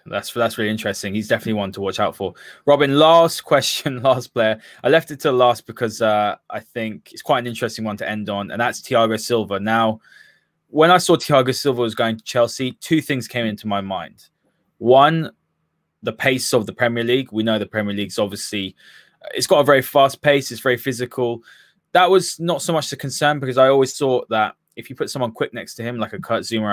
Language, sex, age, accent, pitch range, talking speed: English, male, 20-39, British, 110-140 Hz, 220 wpm